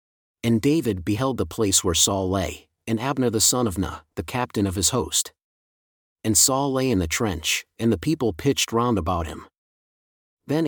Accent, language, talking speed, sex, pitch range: American, English, 185 wpm, male, 95-130 Hz